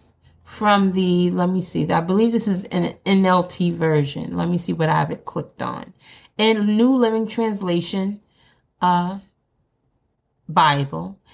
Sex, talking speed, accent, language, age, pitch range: female, 145 wpm, American, English, 30-49, 155-225 Hz